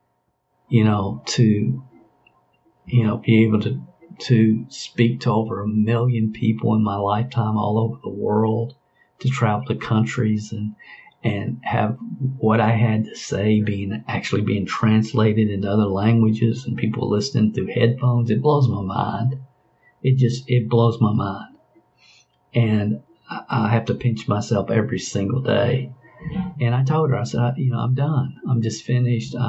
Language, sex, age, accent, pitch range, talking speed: English, male, 50-69, American, 110-125 Hz, 160 wpm